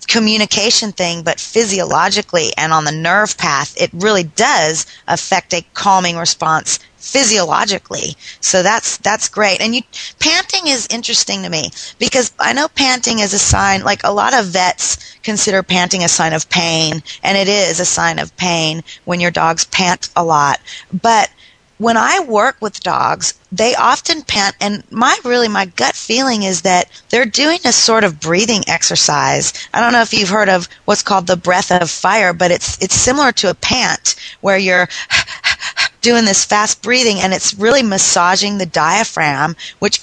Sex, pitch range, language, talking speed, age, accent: female, 180-230 Hz, English, 175 wpm, 30-49, American